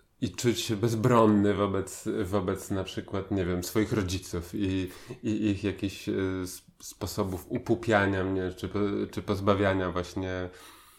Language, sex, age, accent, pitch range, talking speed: Polish, male, 20-39, native, 95-110 Hz, 125 wpm